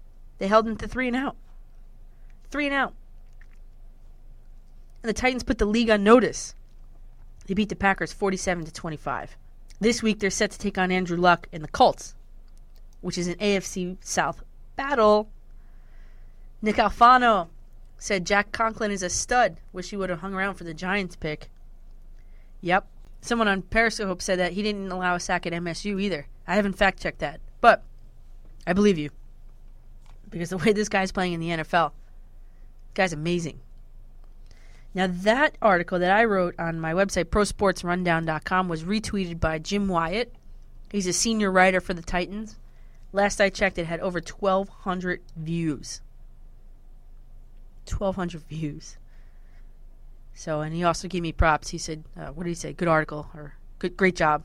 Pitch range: 165-205 Hz